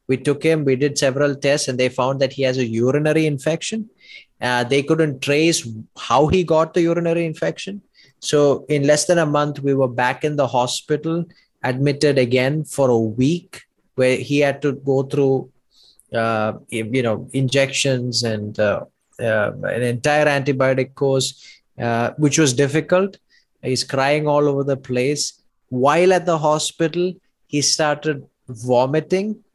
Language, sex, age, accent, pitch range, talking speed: English, male, 20-39, Indian, 130-155 Hz, 155 wpm